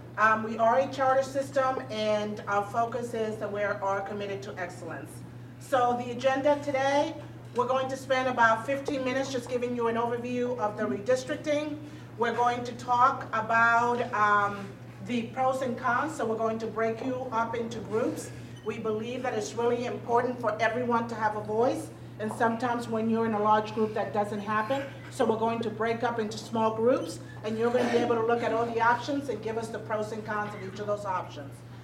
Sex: female